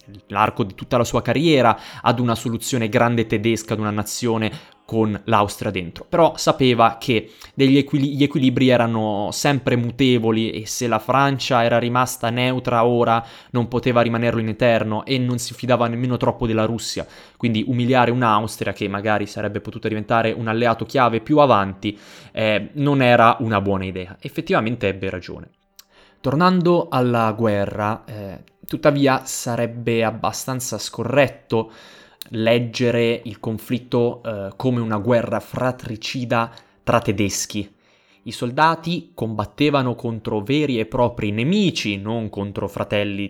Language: Italian